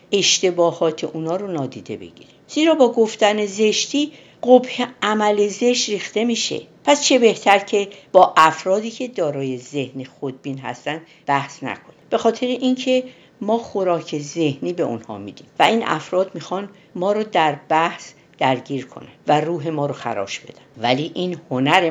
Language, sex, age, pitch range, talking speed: Persian, female, 50-69, 140-210 Hz, 150 wpm